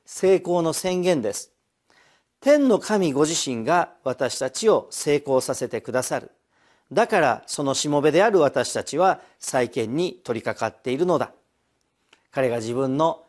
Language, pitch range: Japanese, 130-185 Hz